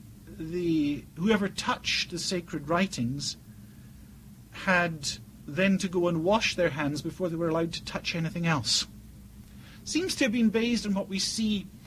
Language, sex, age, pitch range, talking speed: English, male, 50-69, 130-205 Hz, 155 wpm